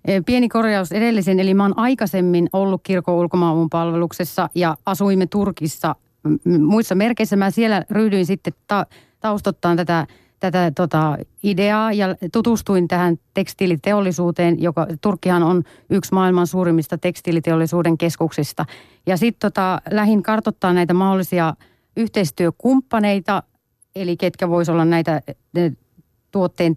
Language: Finnish